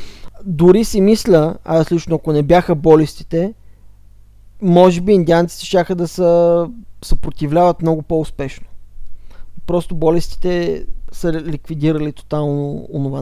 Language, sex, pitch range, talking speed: Bulgarian, male, 125-170 Hz, 110 wpm